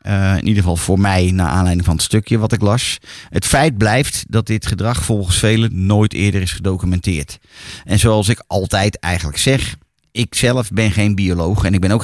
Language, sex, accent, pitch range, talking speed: Dutch, male, Dutch, 95-120 Hz, 205 wpm